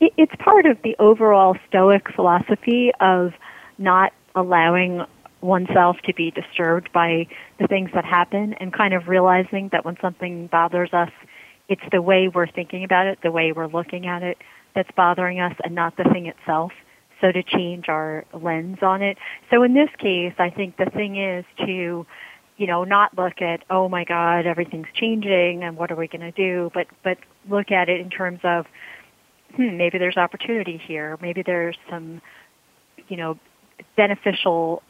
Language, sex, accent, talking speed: English, female, American, 175 wpm